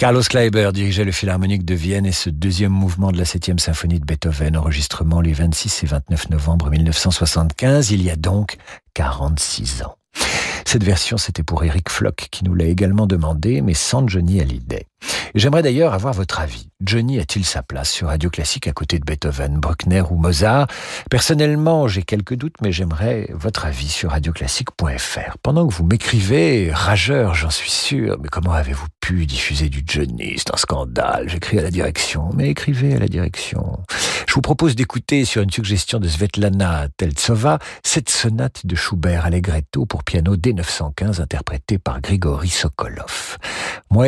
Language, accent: French, French